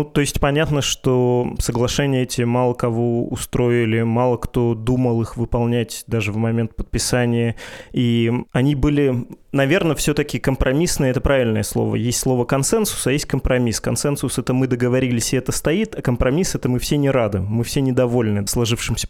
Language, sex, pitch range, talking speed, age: Russian, male, 115-135 Hz, 170 wpm, 20-39